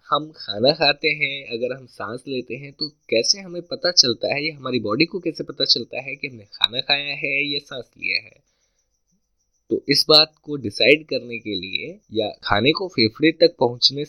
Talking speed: 195 wpm